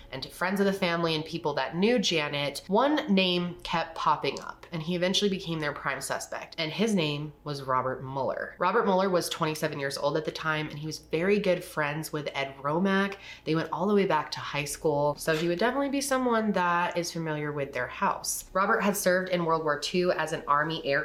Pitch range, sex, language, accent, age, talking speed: 150-185 Hz, female, English, American, 20-39, 225 wpm